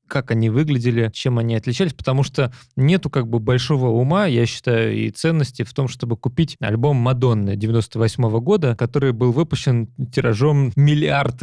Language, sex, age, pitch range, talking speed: Russian, male, 30-49, 115-135 Hz, 150 wpm